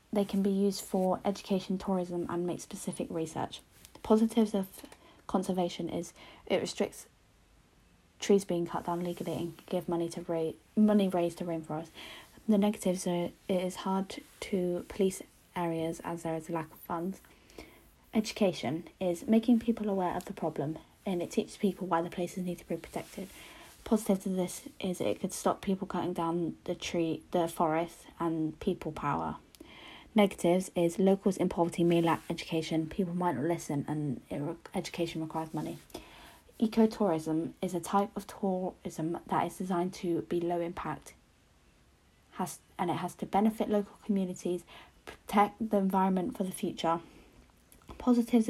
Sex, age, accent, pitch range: female, 20-39, British, 170-200 Hz